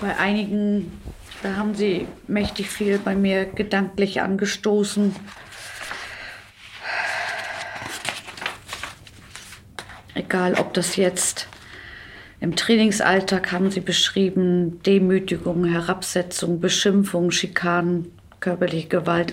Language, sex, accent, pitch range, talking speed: German, female, German, 160-185 Hz, 80 wpm